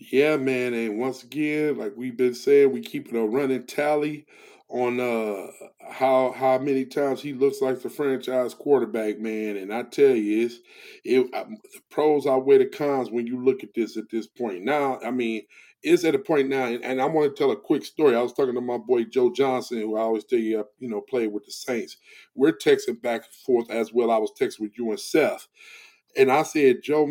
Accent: American